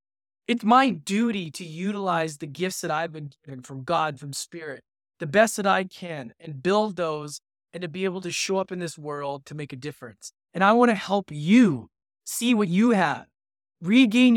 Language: English